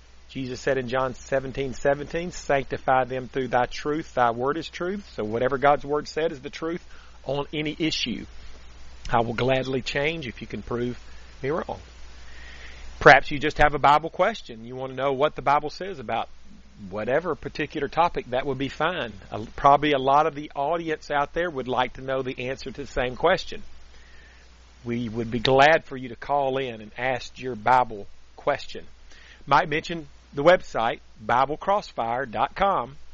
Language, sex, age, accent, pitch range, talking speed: English, male, 40-59, American, 120-150 Hz, 175 wpm